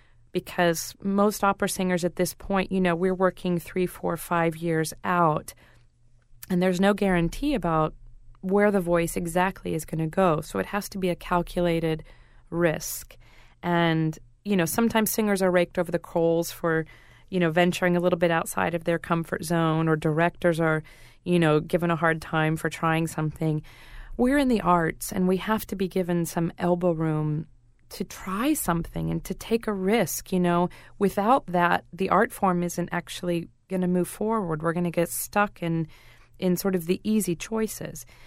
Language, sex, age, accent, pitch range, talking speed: English, female, 40-59, American, 160-185 Hz, 185 wpm